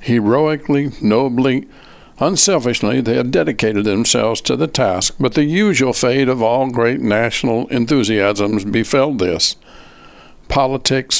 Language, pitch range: English, 115-140 Hz